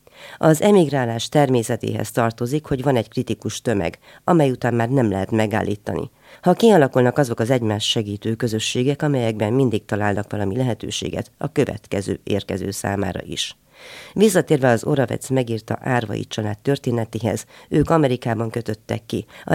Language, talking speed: Hungarian, 135 wpm